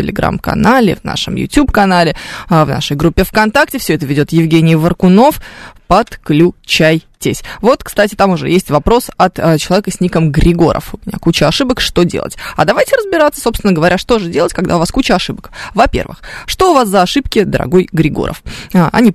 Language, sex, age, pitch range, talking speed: Russian, female, 20-39, 160-205 Hz, 170 wpm